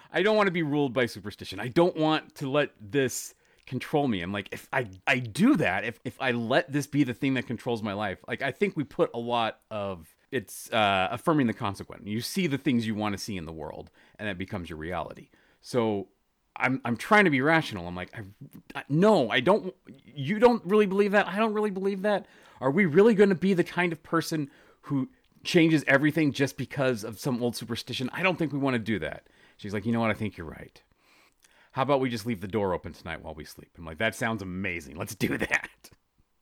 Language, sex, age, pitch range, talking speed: English, male, 30-49, 100-155 Hz, 235 wpm